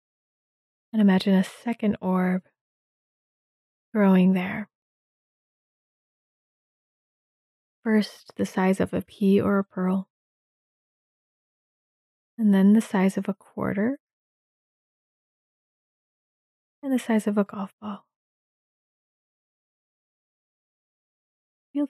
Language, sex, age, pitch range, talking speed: English, female, 20-39, 190-215 Hz, 85 wpm